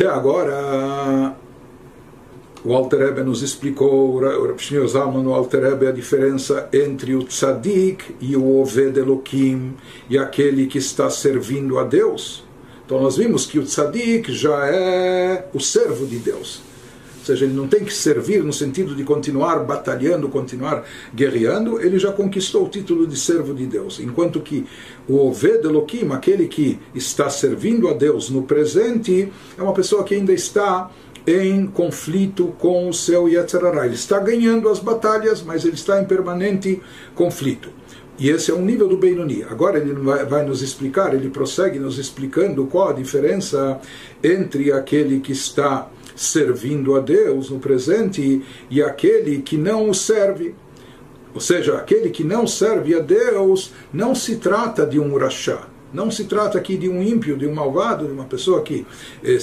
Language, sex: Portuguese, male